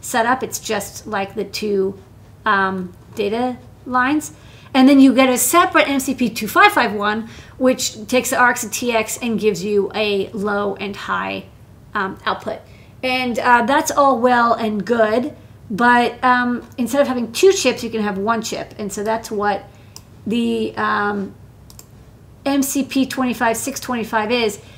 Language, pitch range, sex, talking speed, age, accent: English, 215-255 Hz, female, 140 wpm, 40-59, American